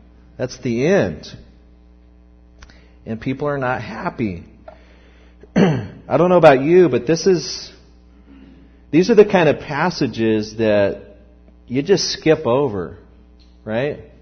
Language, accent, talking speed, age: English, American, 115 wpm, 40-59